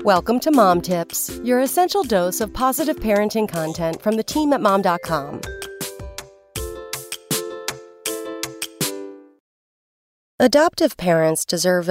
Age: 40-59